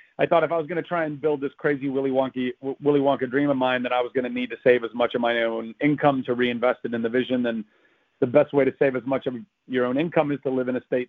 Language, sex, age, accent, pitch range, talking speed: English, male, 40-59, American, 125-145 Hz, 305 wpm